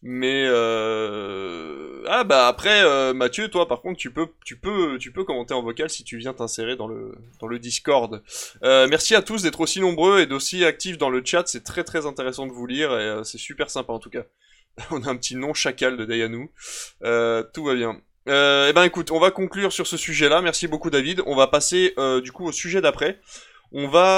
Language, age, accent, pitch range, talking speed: French, 20-39, French, 120-155 Hz, 230 wpm